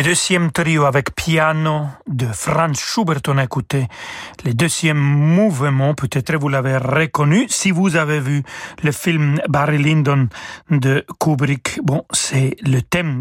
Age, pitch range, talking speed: 40-59, 135-165 Hz, 145 wpm